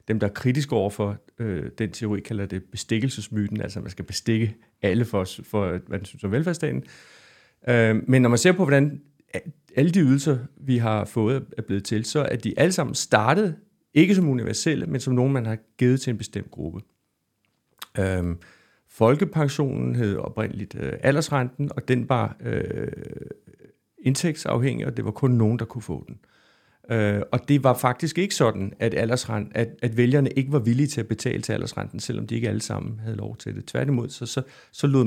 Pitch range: 110-140 Hz